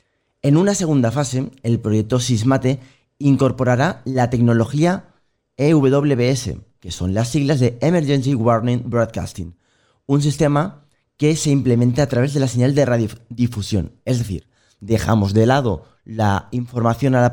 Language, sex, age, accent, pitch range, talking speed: Spanish, male, 30-49, Spanish, 110-140 Hz, 140 wpm